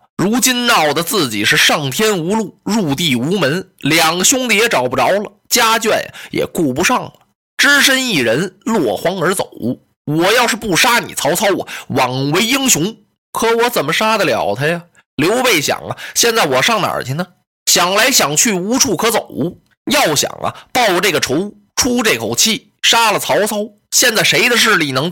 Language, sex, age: Chinese, male, 20-39